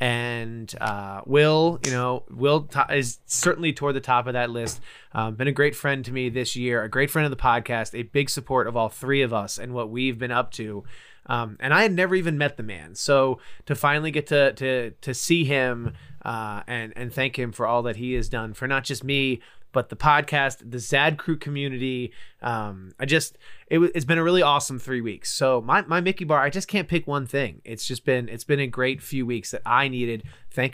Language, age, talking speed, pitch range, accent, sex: English, 20-39, 230 wpm, 120-150 Hz, American, male